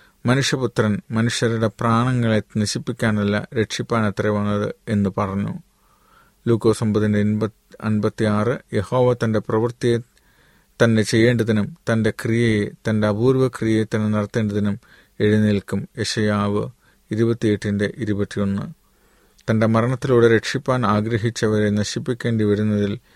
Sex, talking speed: male, 85 wpm